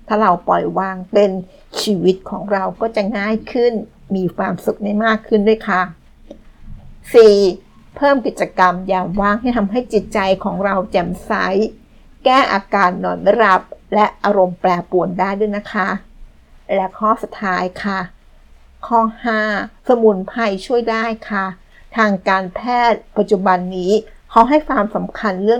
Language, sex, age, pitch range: Thai, female, 60-79, 185-220 Hz